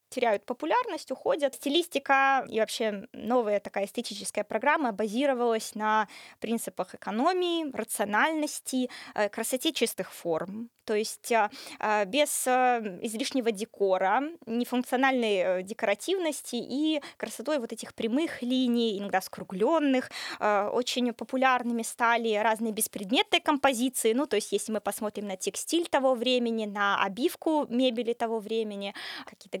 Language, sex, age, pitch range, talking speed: Russian, female, 20-39, 205-260 Hz, 110 wpm